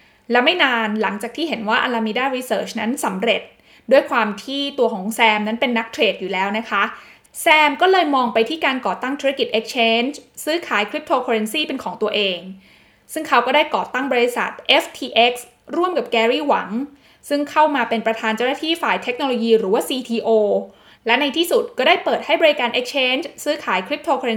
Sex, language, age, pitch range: female, Thai, 20-39, 225-290 Hz